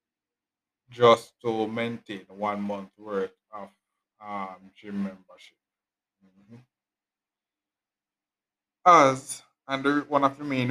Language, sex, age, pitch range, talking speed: English, male, 20-39, 100-125 Hz, 95 wpm